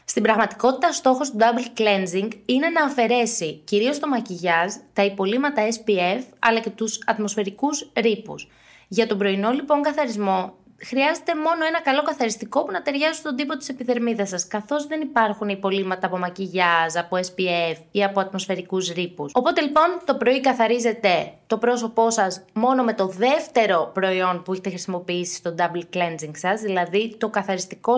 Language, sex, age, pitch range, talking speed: Greek, female, 20-39, 195-255 Hz, 155 wpm